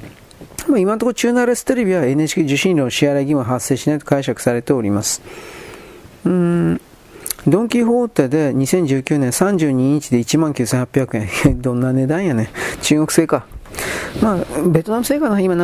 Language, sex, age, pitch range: Japanese, male, 40-59, 125-175 Hz